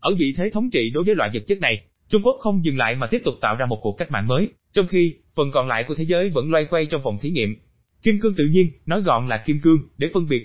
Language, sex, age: Vietnamese, male, 20-39